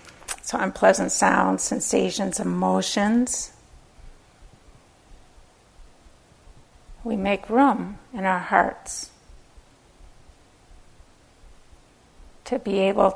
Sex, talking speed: female, 65 wpm